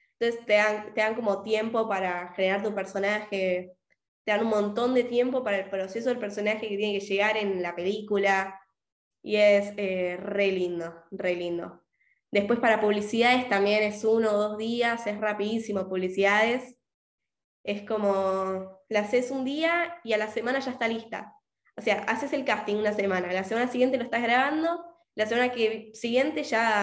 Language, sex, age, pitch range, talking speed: Spanish, female, 10-29, 200-245 Hz, 175 wpm